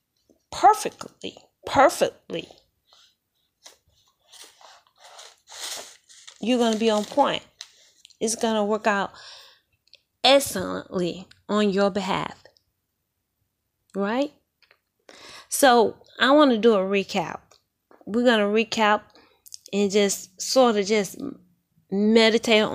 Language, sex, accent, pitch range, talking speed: English, female, American, 195-250 Hz, 90 wpm